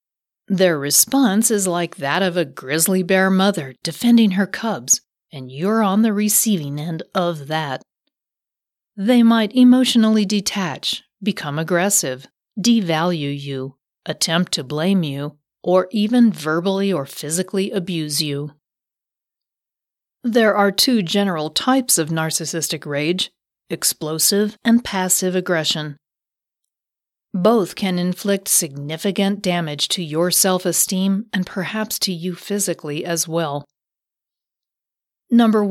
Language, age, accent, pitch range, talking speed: English, 40-59, American, 155-200 Hz, 115 wpm